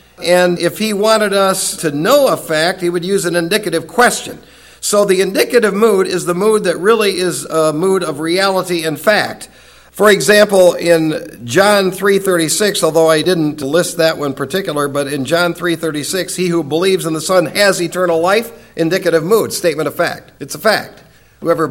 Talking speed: 180 wpm